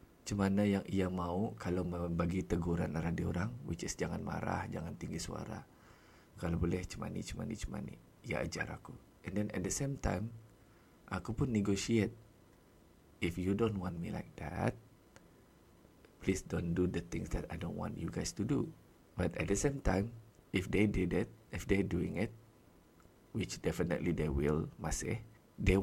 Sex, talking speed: male, 170 wpm